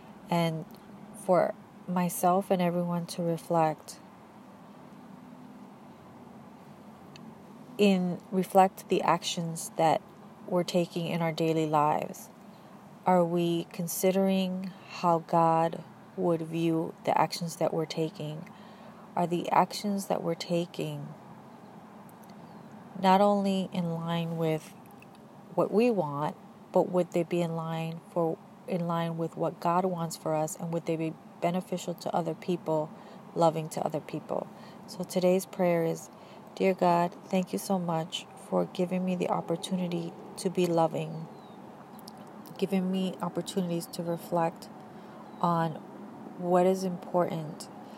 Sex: female